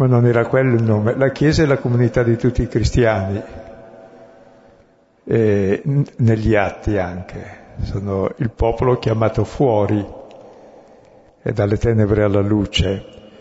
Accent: native